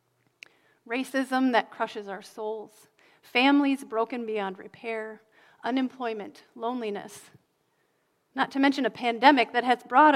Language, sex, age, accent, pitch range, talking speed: English, female, 30-49, American, 220-270 Hz, 110 wpm